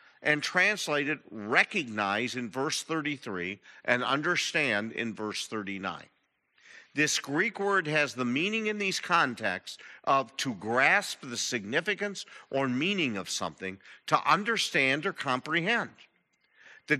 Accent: American